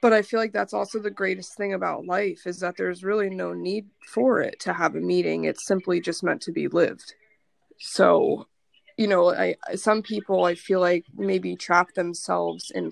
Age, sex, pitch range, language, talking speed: 20-39, female, 180-210 Hz, English, 200 wpm